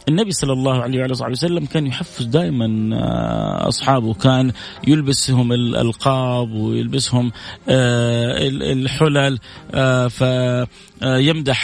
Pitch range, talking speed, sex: 130-175 Hz, 75 wpm, male